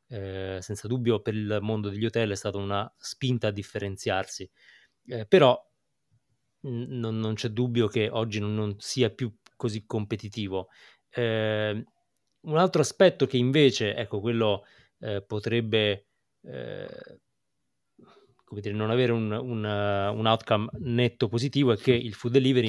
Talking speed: 145 wpm